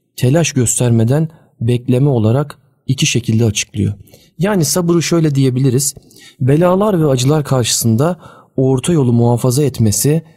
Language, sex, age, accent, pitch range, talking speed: Turkish, male, 40-59, native, 115-145 Hz, 110 wpm